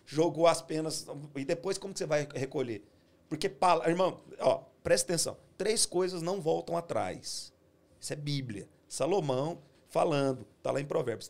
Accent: Brazilian